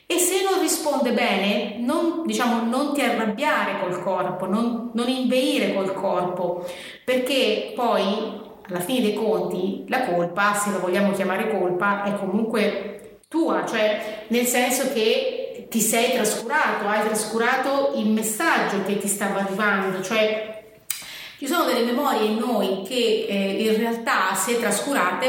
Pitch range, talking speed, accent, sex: 195-245 Hz, 145 wpm, native, female